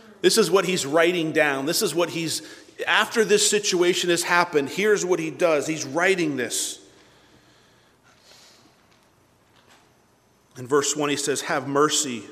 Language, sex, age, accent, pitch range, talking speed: English, male, 40-59, American, 150-205 Hz, 140 wpm